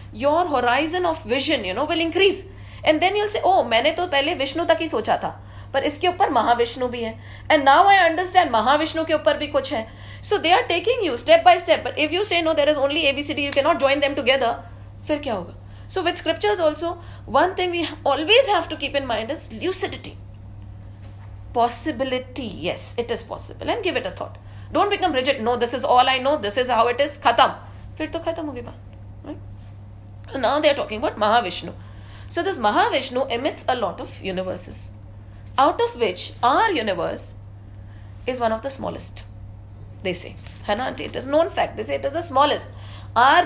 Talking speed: 185 wpm